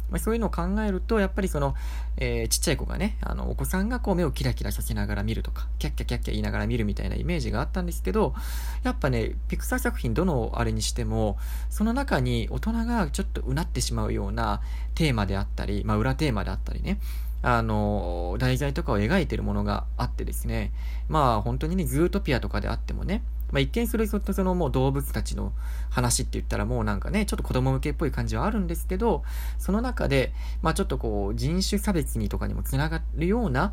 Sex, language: male, Japanese